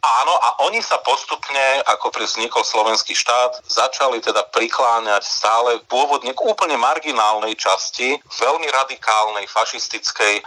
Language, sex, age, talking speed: Slovak, male, 40-59, 125 wpm